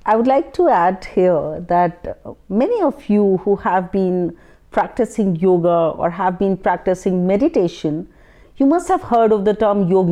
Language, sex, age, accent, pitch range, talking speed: Hindi, female, 40-59, native, 180-250 Hz, 165 wpm